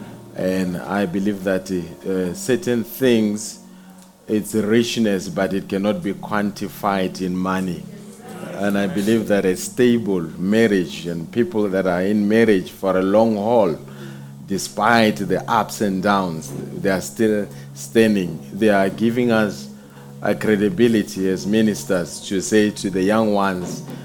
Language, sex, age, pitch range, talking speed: English, male, 40-59, 95-115 Hz, 140 wpm